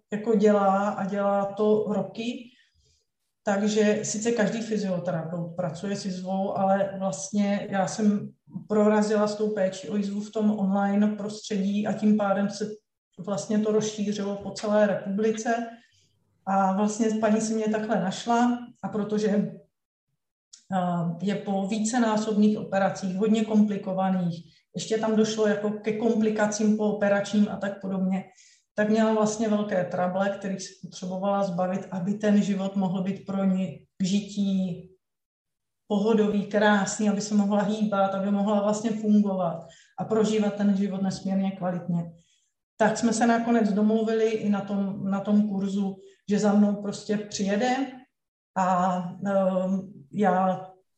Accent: native